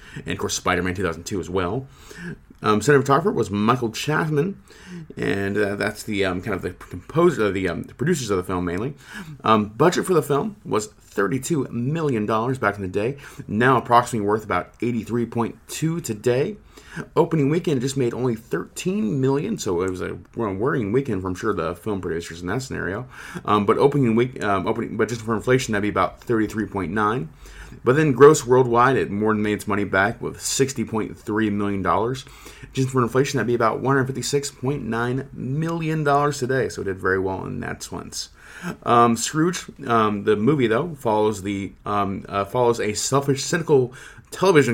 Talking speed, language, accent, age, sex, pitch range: 190 wpm, English, American, 30-49, male, 100-135 Hz